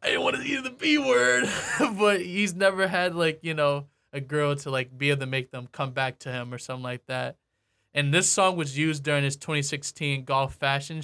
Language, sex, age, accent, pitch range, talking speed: English, male, 20-39, American, 130-155 Hz, 235 wpm